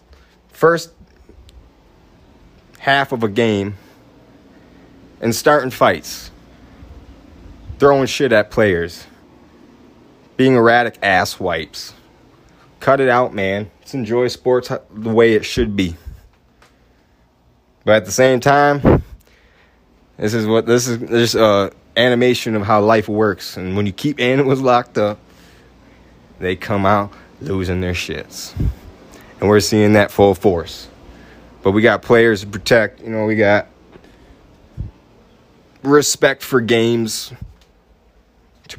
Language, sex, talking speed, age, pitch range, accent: English, male, 120 wpm, 20-39, 95-125 Hz, American